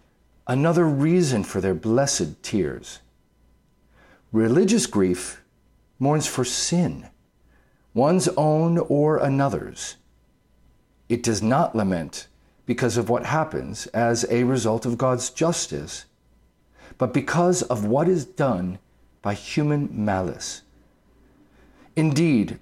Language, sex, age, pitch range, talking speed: English, male, 50-69, 105-160 Hz, 105 wpm